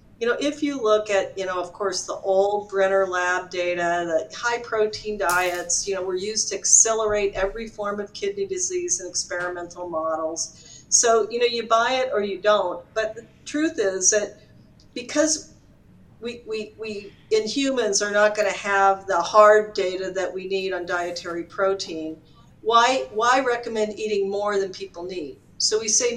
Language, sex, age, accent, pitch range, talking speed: English, female, 50-69, American, 185-235 Hz, 175 wpm